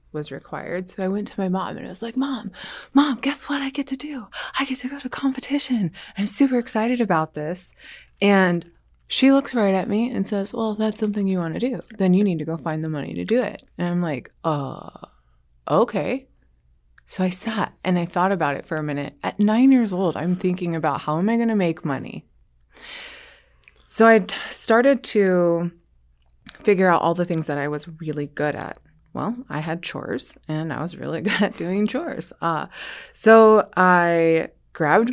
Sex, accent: female, American